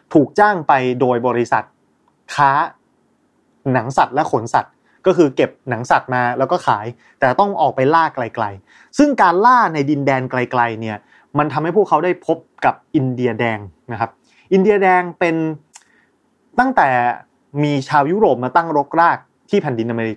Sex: male